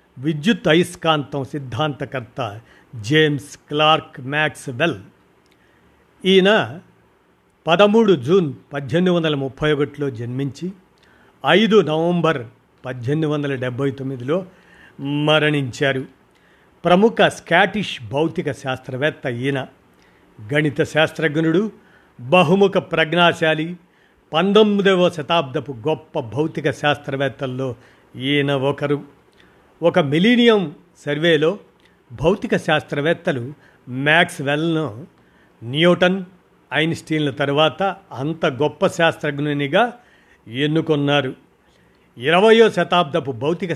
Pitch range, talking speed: 140-175 Hz, 70 wpm